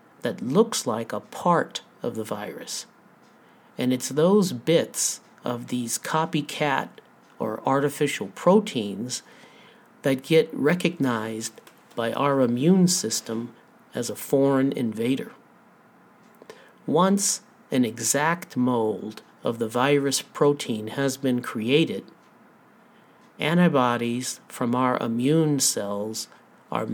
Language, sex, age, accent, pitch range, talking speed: English, male, 50-69, American, 125-165 Hz, 100 wpm